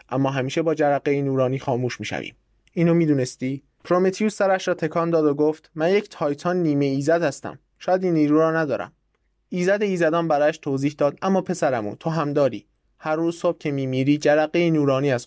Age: 20-39